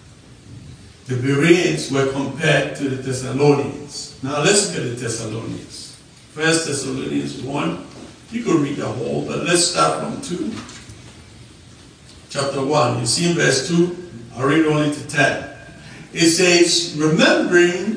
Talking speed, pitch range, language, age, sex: 135 wpm, 135-185 Hz, English, 60-79, male